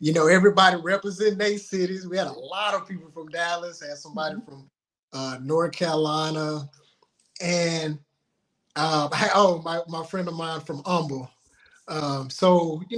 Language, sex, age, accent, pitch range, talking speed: English, male, 20-39, American, 145-180 Hz, 155 wpm